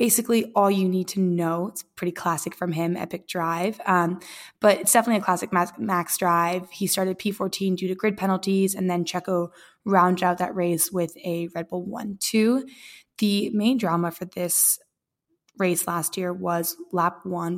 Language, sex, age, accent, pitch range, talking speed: English, female, 20-39, American, 170-195 Hz, 175 wpm